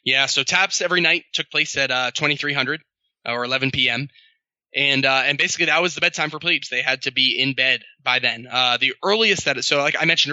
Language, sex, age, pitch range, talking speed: English, male, 20-39, 125-145 Hz, 225 wpm